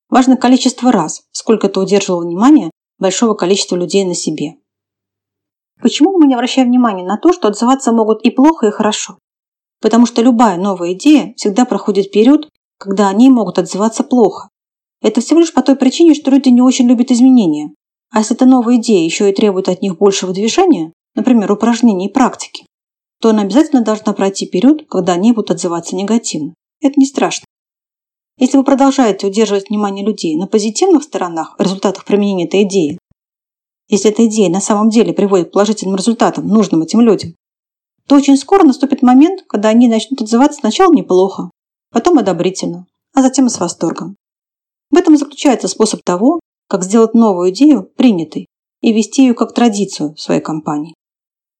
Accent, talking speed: native, 165 wpm